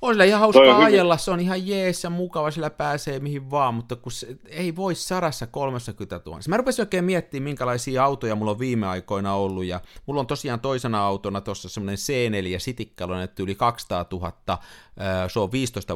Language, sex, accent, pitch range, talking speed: Finnish, male, native, 100-140 Hz, 190 wpm